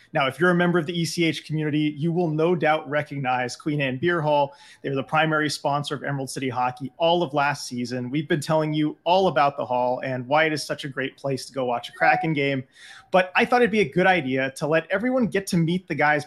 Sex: male